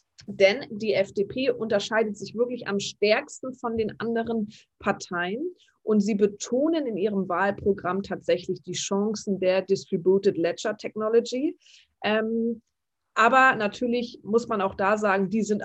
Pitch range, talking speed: 185-230 Hz, 125 wpm